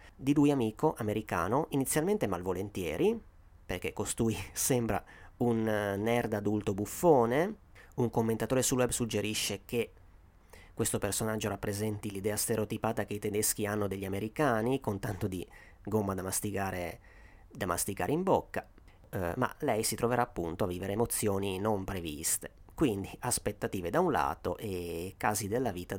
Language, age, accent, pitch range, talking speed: Italian, 30-49, native, 95-120 Hz, 135 wpm